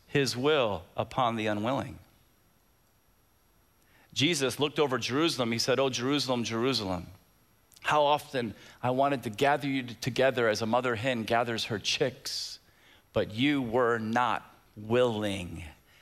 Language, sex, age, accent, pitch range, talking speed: English, male, 40-59, American, 105-130 Hz, 125 wpm